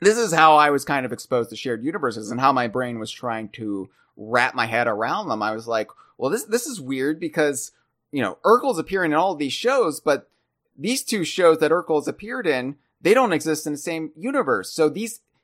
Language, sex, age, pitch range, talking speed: English, male, 30-49, 130-175 Hz, 225 wpm